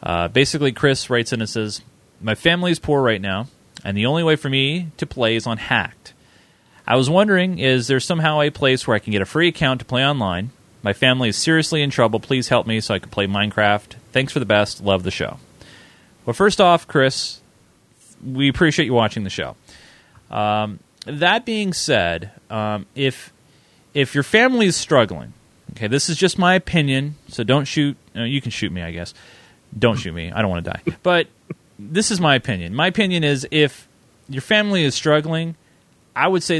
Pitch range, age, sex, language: 105-145 Hz, 30-49, male, English